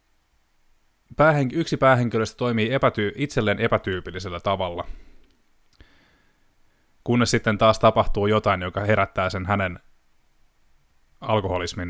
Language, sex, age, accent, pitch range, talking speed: Finnish, male, 20-39, native, 90-110 Hz, 85 wpm